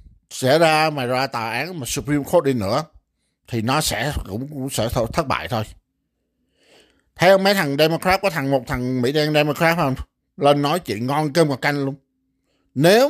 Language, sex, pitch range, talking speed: Vietnamese, male, 125-170 Hz, 190 wpm